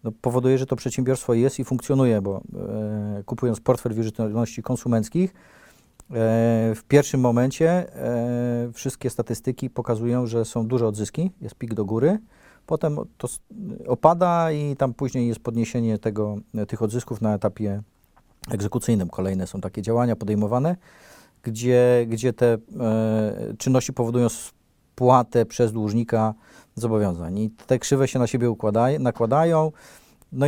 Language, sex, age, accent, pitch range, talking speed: Polish, male, 40-59, native, 110-135 Hz, 135 wpm